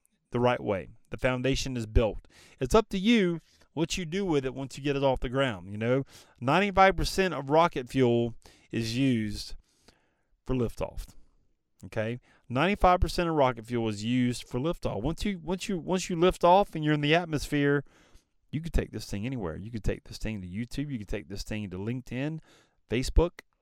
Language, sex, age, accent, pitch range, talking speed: English, male, 30-49, American, 110-155 Hz, 195 wpm